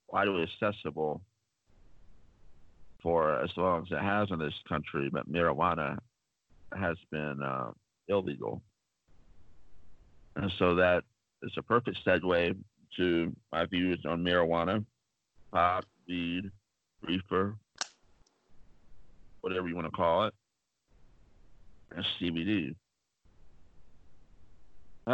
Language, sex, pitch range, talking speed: English, male, 80-100 Hz, 100 wpm